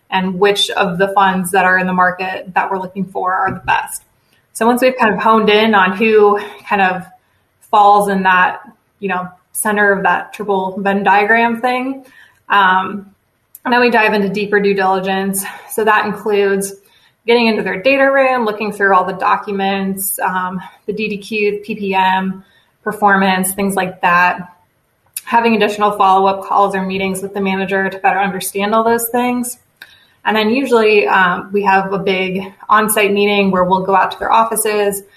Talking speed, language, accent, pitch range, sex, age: 175 wpm, English, American, 190-210 Hz, female, 20-39